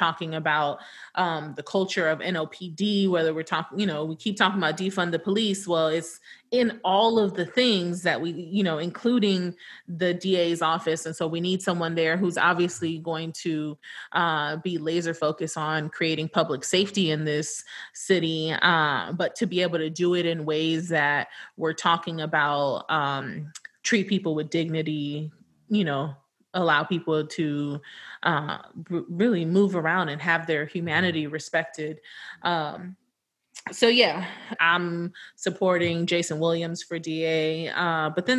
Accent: American